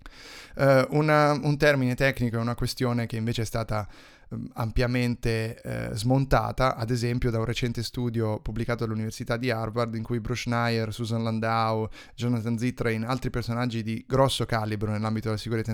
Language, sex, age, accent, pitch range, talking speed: Italian, male, 20-39, native, 110-130 Hz, 150 wpm